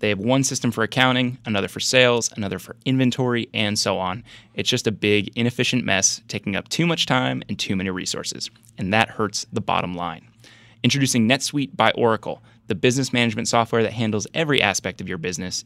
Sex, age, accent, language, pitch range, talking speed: male, 20-39, American, English, 105-125 Hz, 195 wpm